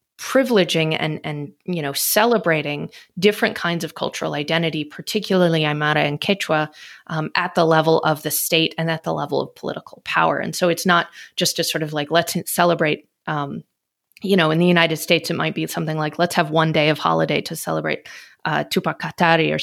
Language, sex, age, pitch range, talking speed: English, female, 30-49, 155-185 Hz, 195 wpm